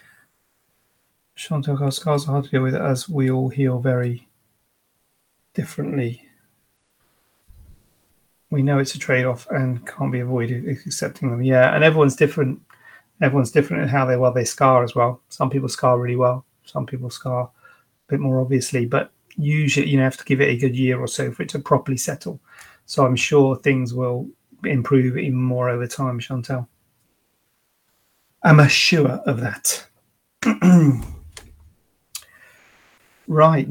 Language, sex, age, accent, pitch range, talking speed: English, male, 30-49, British, 125-145 Hz, 150 wpm